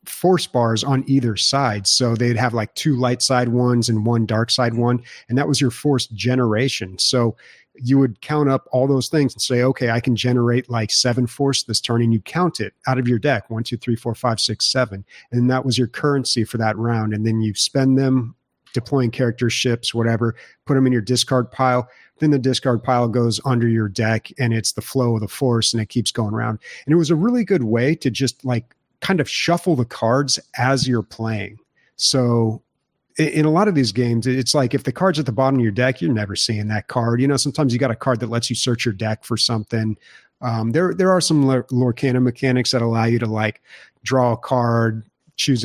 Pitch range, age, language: 115-130 Hz, 40-59, English